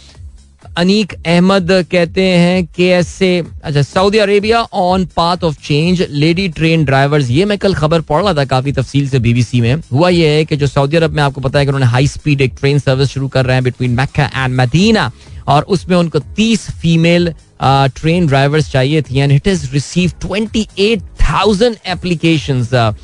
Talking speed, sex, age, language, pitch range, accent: 115 wpm, male, 20-39, Hindi, 125-170 Hz, native